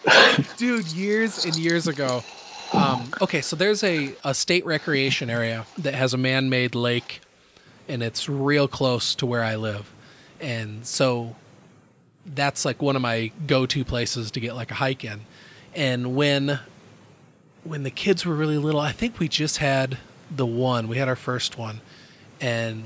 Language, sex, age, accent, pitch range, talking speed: English, male, 30-49, American, 125-150 Hz, 165 wpm